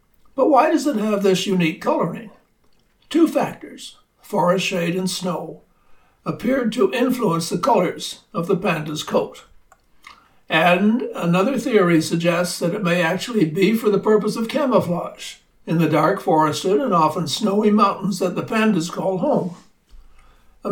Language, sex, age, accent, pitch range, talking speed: English, male, 60-79, American, 160-200 Hz, 150 wpm